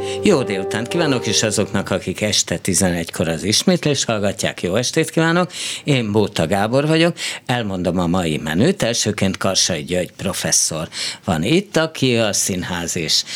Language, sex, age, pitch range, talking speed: Hungarian, male, 60-79, 95-145 Hz, 145 wpm